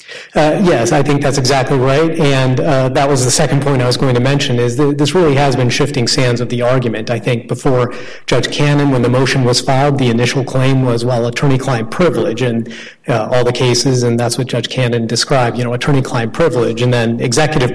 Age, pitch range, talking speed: 40-59, 125-150 Hz, 220 wpm